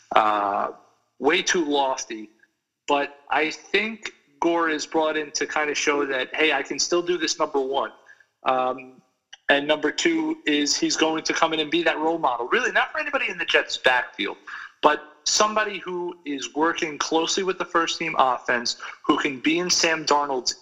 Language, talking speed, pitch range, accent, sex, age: English, 185 wpm, 130-170 Hz, American, male, 40-59